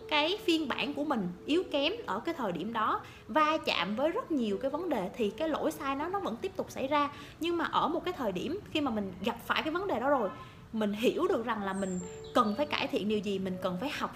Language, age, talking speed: Vietnamese, 20-39, 270 wpm